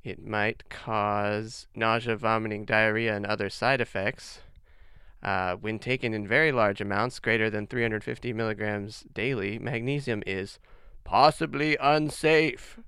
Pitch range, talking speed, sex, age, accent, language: 105-135 Hz, 120 wpm, male, 20-39, American, English